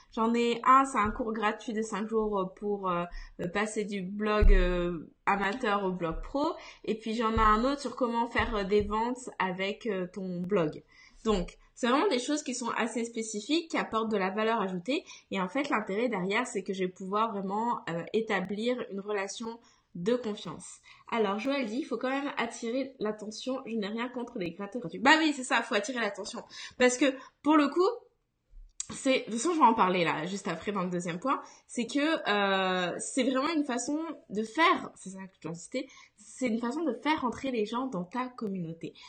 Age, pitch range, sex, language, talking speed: 20-39, 200-265 Hz, female, French, 210 wpm